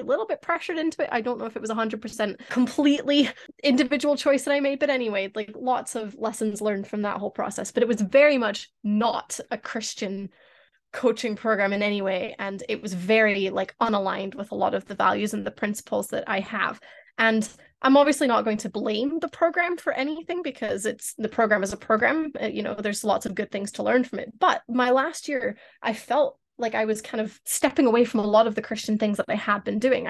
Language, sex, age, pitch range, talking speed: English, female, 10-29, 215-280 Hz, 230 wpm